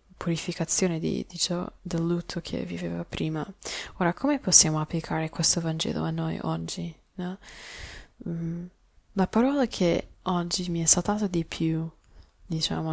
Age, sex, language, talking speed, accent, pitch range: 20-39, female, Italian, 115 wpm, native, 155-190 Hz